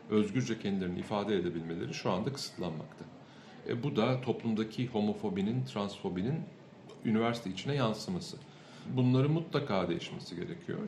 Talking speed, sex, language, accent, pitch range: 110 wpm, male, Turkish, native, 95-110 Hz